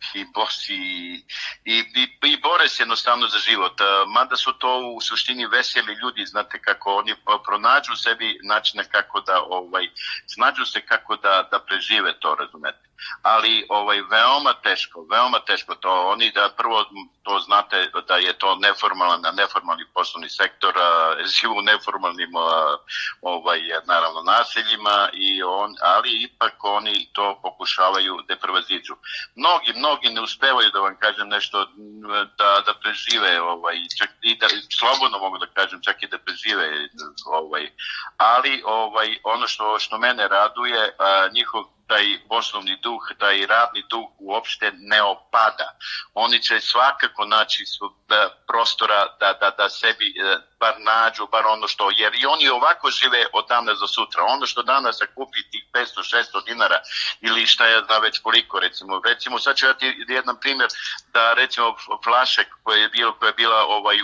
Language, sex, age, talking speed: Croatian, male, 50-69, 155 wpm